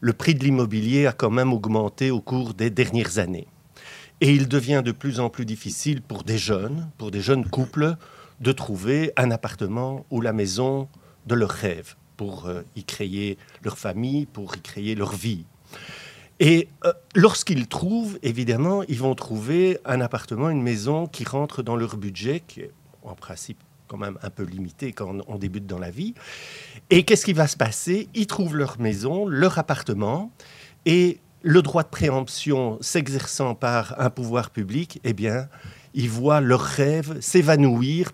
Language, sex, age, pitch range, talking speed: French, male, 50-69, 115-150 Hz, 170 wpm